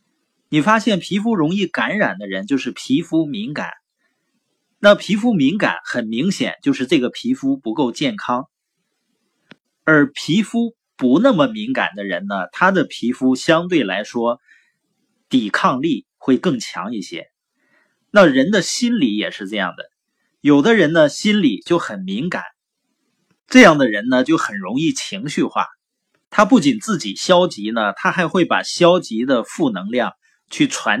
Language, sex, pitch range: Chinese, male, 160-265 Hz